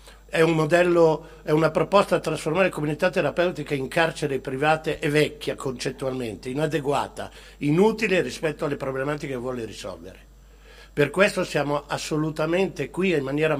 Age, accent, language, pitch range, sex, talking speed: 60-79, native, Italian, 140-175 Hz, male, 140 wpm